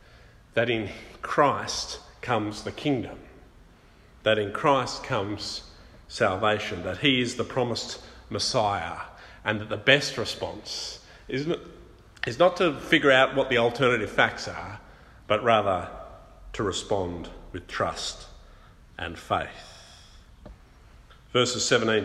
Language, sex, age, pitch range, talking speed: English, male, 50-69, 110-145 Hz, 115 wpm